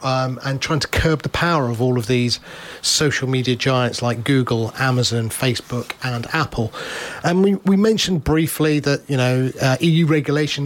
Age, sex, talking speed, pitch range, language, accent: 40-59, male, 175 wpm, 125-150 Hz, English, British